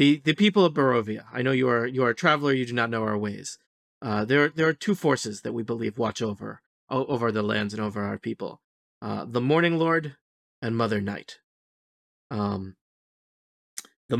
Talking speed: 195 wpm